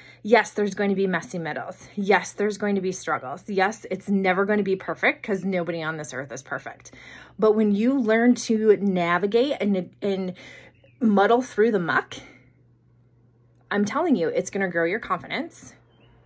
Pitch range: 130-220 Hz